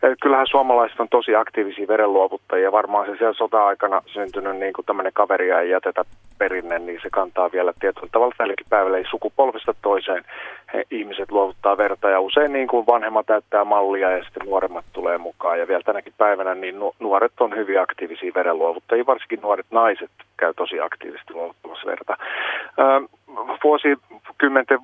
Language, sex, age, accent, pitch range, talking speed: Finnish, male, 30-49, native, 105-135 Hz, 155 wpm